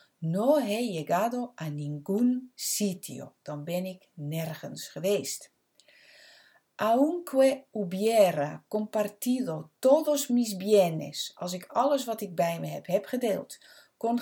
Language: Dutch